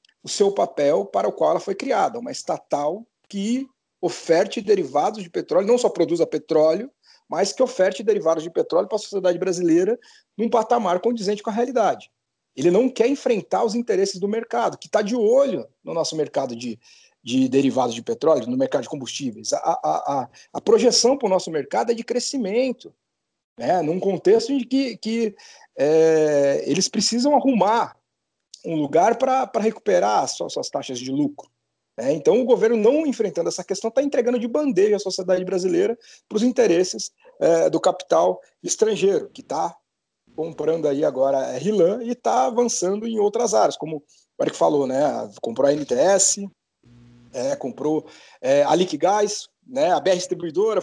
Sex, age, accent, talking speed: male, 50-69, Brazilian, 160 wpm